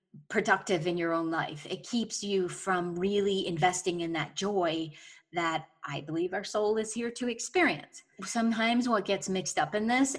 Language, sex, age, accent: English, female, 30-49, American